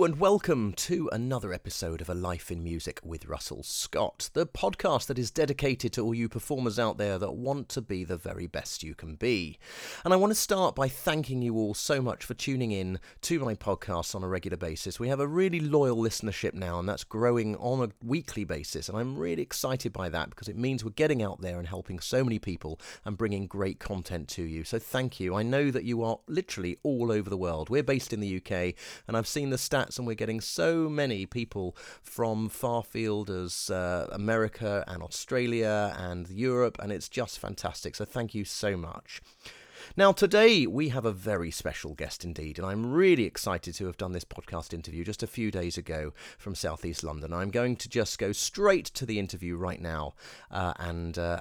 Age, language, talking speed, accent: 30-49, English, 210 wpm, British